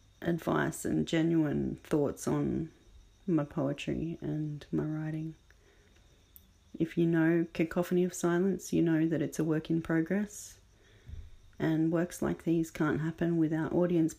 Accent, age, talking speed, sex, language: Australian, 30-49, 135 wpm, female, English